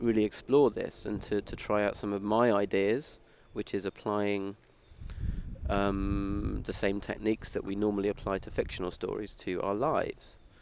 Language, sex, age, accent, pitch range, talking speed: English, male, 30-49, British, 95-110 Hz, 165 wpm